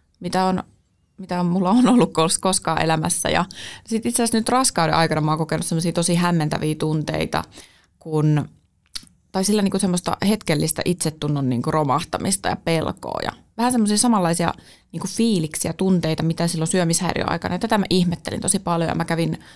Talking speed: 145 wpm